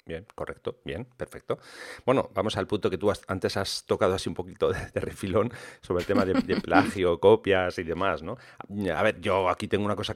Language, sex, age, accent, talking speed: English, male, 40-59, Spanish, 220 wpm